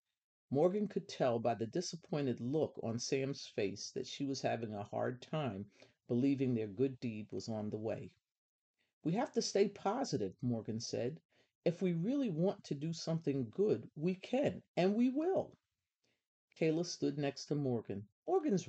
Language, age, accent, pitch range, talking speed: English, 50-69, American, 120-170 Hz, 165 wpm